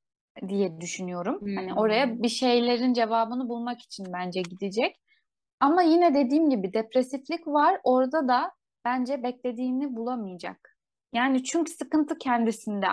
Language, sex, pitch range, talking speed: Turkish, female, 200-255 Hz, 120 wpm